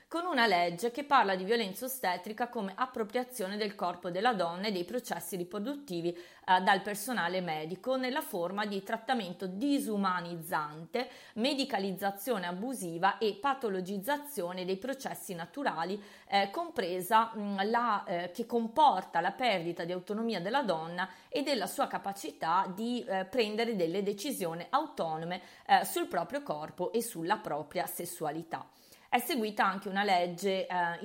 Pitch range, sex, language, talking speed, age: 180-235 Hz, female, Italian, 135 wpm, 30-49